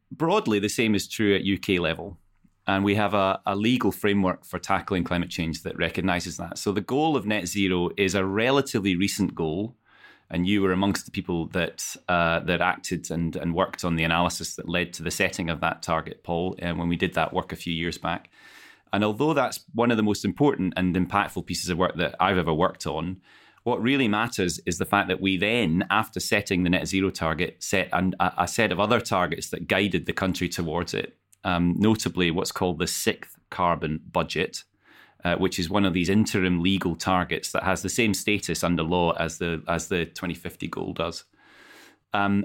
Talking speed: 205 wpm